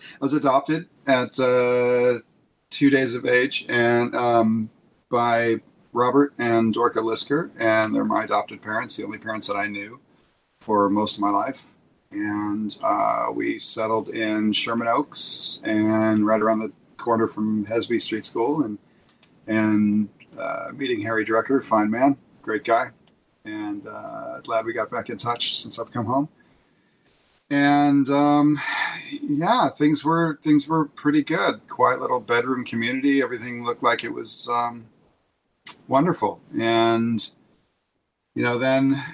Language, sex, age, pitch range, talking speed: English, male, 40-59, 110-135 Hz, 145 wpm